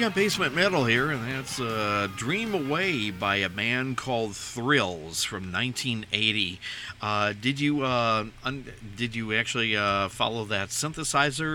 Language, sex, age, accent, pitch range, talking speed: English, male, 50-69, American, 105-140 Hz, 130 wpm